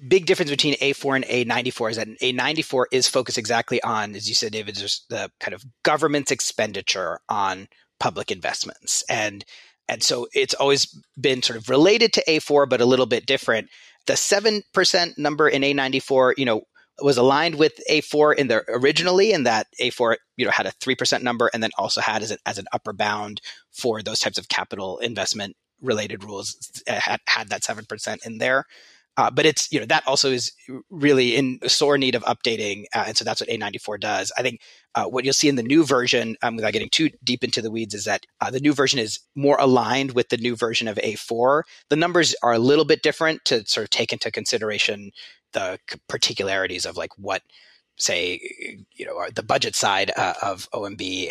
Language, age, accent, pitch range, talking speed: English, 30-49, American, 120-155 Hz, 200 wpm